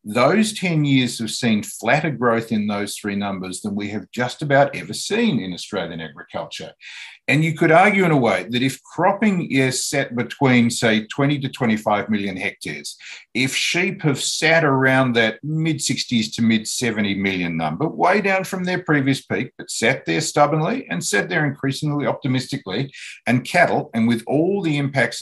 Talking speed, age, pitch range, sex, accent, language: 175 wpm, 50-69, 110-145 Hz, male, Australian, English